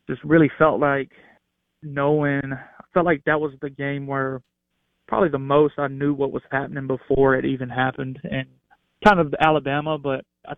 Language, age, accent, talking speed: English, 20-39, American, 180 wpm